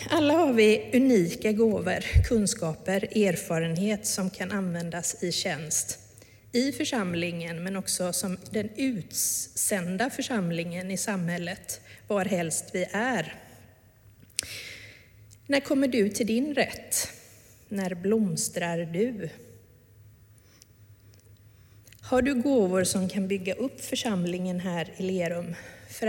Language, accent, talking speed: Swedish, native, 110 wpm